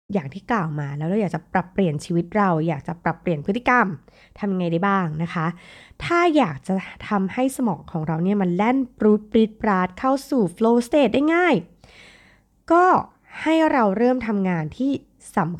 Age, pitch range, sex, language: 20-39, 160-225 Hz, female, Thai